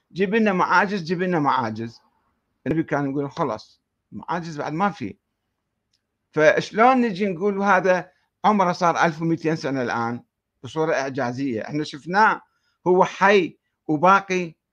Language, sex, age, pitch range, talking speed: Arabic, male, 50-69, 145-195 Hz, 115 wpm